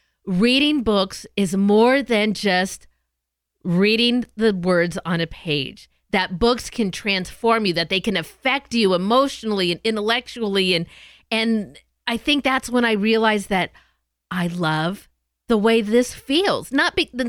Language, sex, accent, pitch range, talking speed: English, female, American, 200-260 Hz, 145 wpm